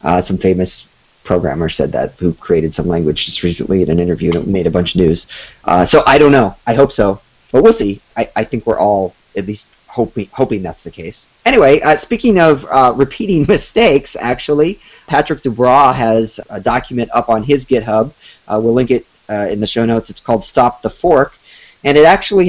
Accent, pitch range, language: American, 115-140 Hz, English